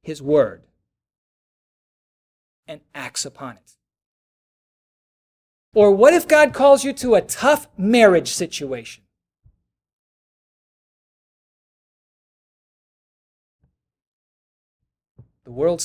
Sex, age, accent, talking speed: male, 50-69, American, 70 wpm